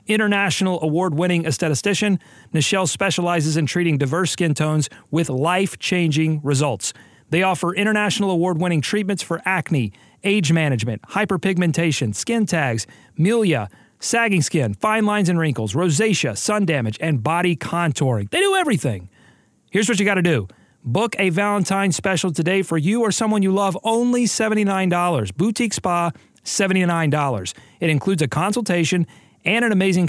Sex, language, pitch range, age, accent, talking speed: male, English, 145-195 Hz, 40-59, American, 145 wpm